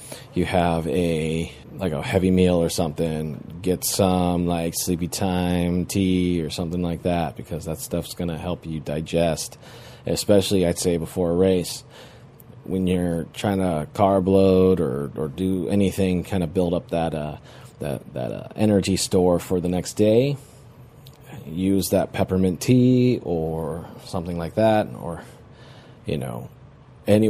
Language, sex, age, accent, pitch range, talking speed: English, male, 30-49, American, 85-110 Hz, 155 wpm